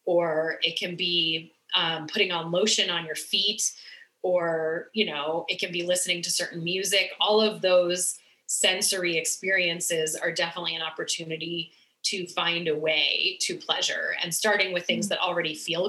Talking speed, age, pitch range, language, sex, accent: 160 wpm, 30-49, 170-195 Hz, English, female, American